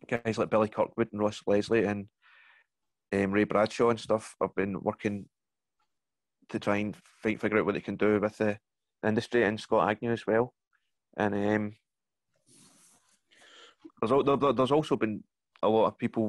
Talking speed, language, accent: 160 wpm, English, British